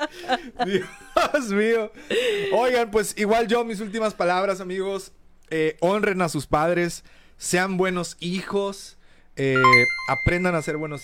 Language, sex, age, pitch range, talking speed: Spanish, male, 30-49, 130-160 Hz, 125 wpm